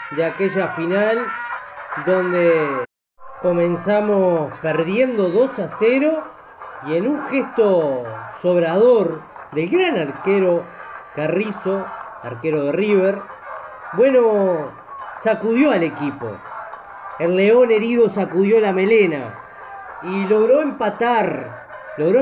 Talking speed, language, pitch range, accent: 95 wpm, Spanish, 175-230 Hz, Argentinian